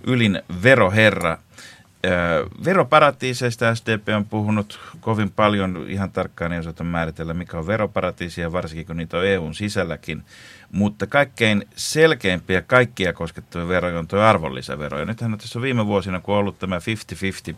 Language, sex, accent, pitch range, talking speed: Finnish, male, native, 90-115 Hz, 145 wpm